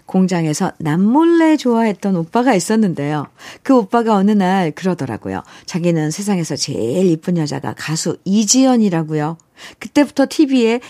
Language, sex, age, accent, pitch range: Korean, female, 50-69, native, 175-245 Hz